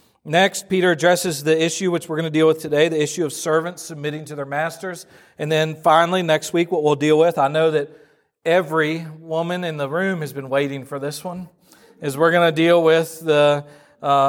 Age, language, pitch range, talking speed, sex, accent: 40-59, English, 150-175 Hz, 215 wpm, male, American